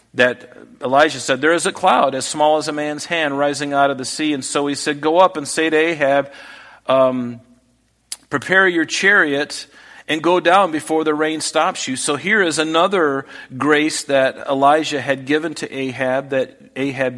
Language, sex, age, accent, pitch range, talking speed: English, male, 40-59, American, 120-150 Hz, 185 wpm